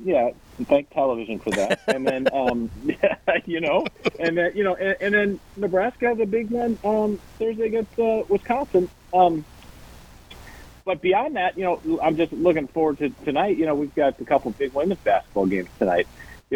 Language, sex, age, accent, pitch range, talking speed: English, male, 40-59, American, 115-180 Hz, 190 wpm